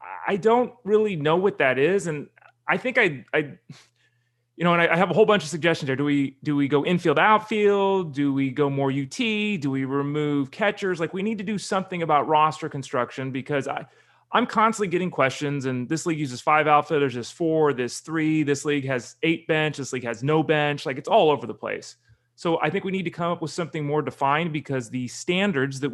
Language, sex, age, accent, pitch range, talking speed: English, male, 30-49, American, 135-180 Hz, 215 wpm